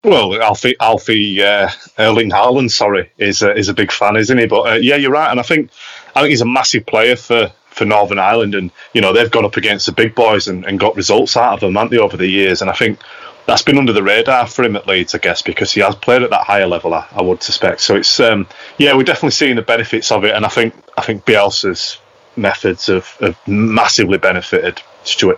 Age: 30-49